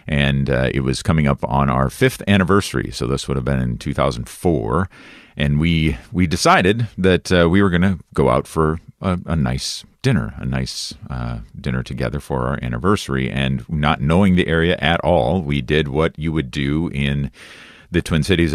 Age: 40-59